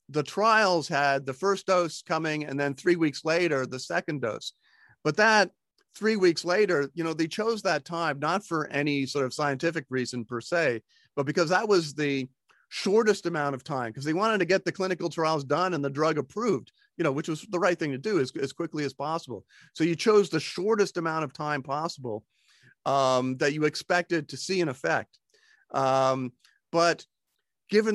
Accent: American